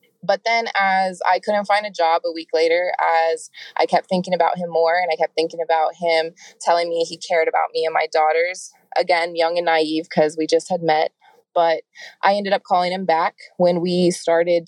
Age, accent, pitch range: 20-39, American, 160-175 Hz